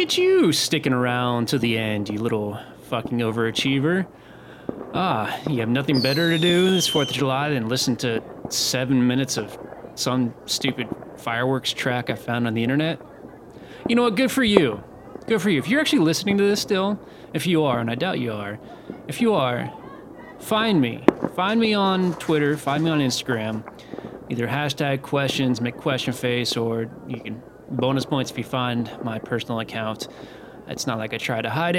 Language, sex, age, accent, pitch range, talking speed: English, male, 20-39, American, 120-170 Hz, 185 wpm